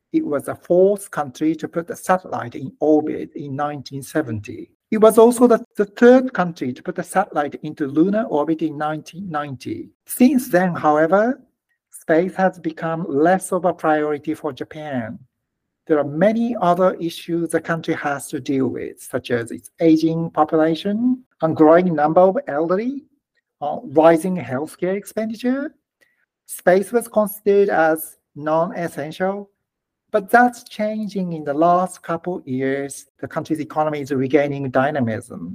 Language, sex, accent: English, male, Japanese